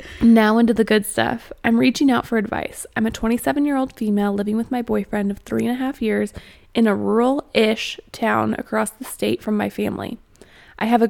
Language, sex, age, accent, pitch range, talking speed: English, female, 20-39, American, 215-240 Hz, 210 wpm